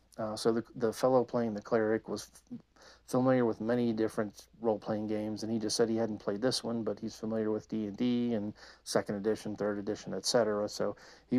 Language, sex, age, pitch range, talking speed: English, male, 40-59, 110-120 Hz, 195 wpm